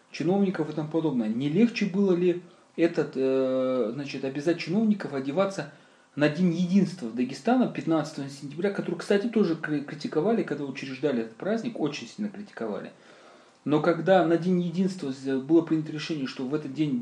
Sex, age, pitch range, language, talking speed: male, 30-49, 140-205 Hz, Russian, 140 wpm